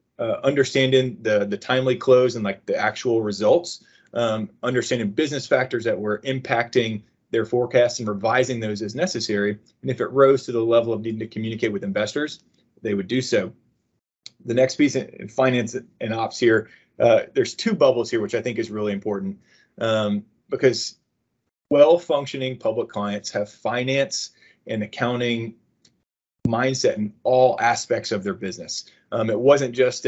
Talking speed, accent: 165 wpm, American